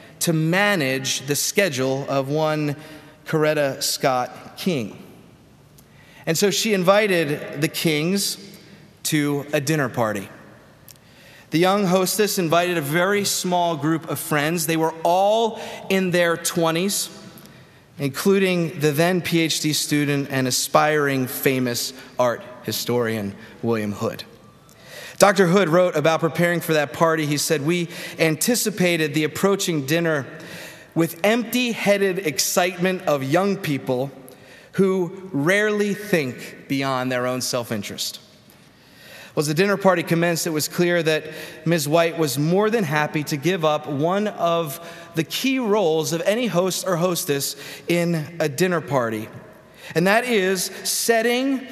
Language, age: English, 30-49